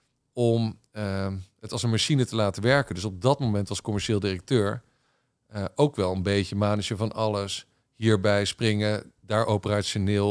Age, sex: 50-69, male